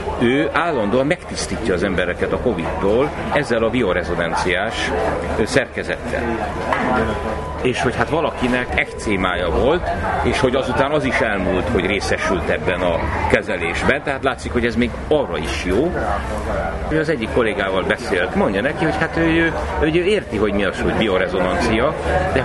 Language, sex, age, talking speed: Hungarian, male, 60-79, 150 wpm